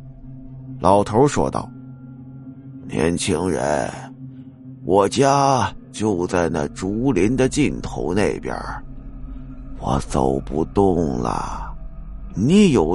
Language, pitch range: Chinese, 95-140 Hz